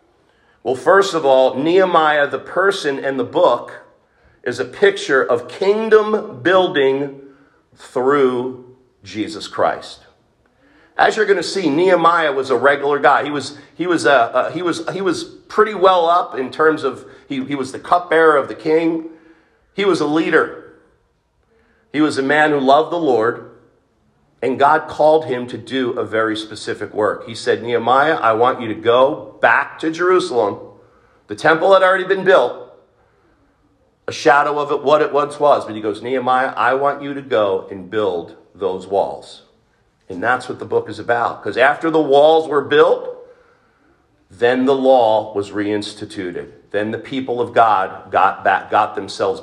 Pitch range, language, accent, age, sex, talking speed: 135-215 Hz, English, American, 50-69, male, 170 wpm